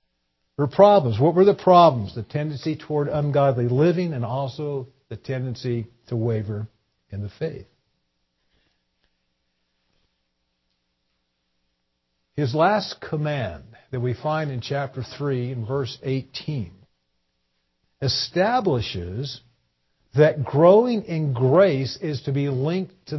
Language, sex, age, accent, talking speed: English, male, 50-69, American, 105 wpm